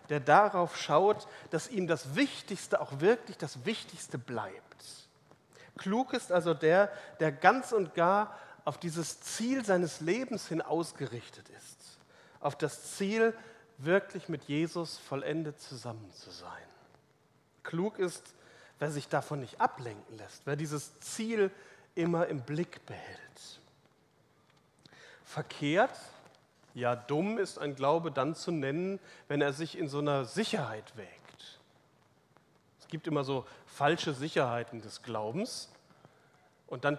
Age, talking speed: 40-59, 130 wpm